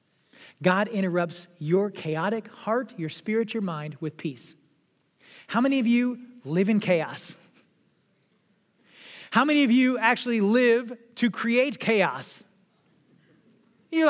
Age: 30-49